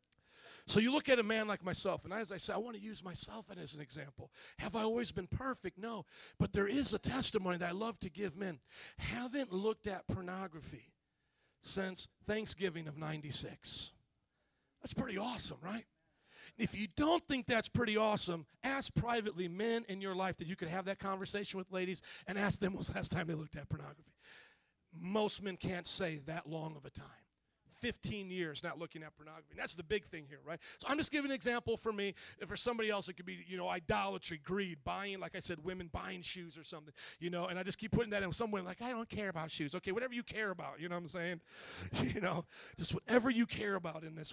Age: 40-59